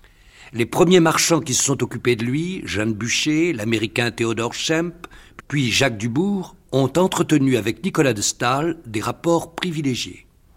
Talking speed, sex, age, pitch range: 150 wpm, male, 50-69, 110-150 Hz